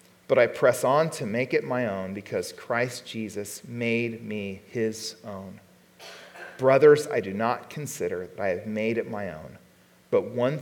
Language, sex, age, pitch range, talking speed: English, male, 40-59, 140-195 Hz, 170 wpm